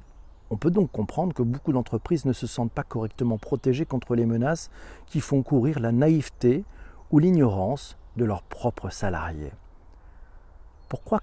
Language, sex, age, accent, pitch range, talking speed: French, male, 40-59, French, 100-140 Hz, 150 wpm